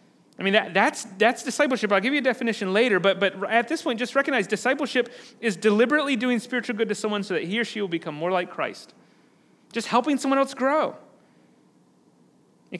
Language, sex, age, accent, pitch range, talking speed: English, male, 30-49, American, 210-255 Hz, 200 wpm